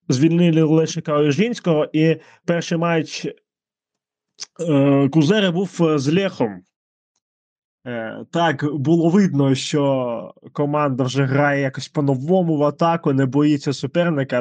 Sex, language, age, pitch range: male, Ukrainian, 20-39, 135-160 Hz